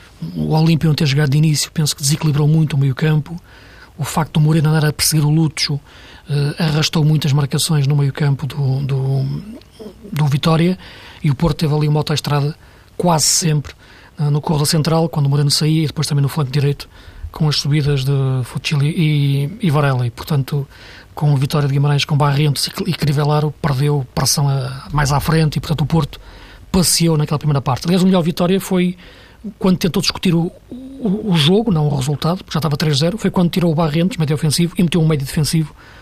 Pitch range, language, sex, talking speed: 145-170 Hz, Portuguese, male, 205 wpm